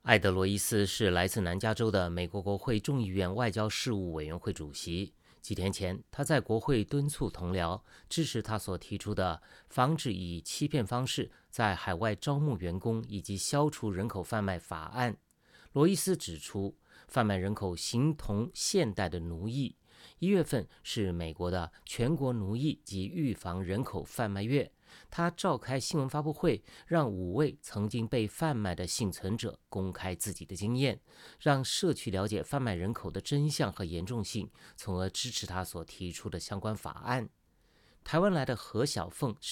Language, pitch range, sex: English, 95-140 Hz, male